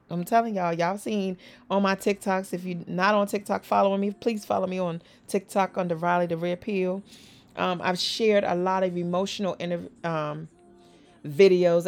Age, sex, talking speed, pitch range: 30-49, female, 170 wpm, 175-220 Hz